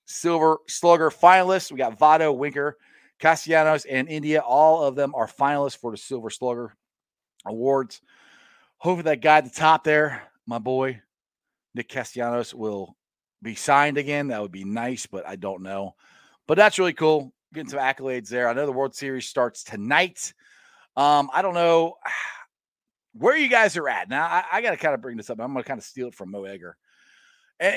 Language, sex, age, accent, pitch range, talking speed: English, male, 40-59, American, 135-195 Hz, 190 wpm